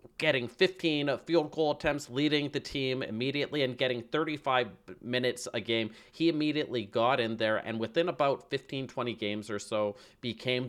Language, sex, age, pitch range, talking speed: English, male, 30-49, 100-125 Hz, 165 wpm